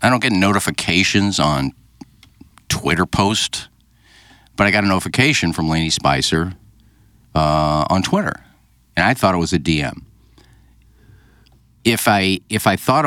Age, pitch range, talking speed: 50-69, 80-105 Hz, 140 wpm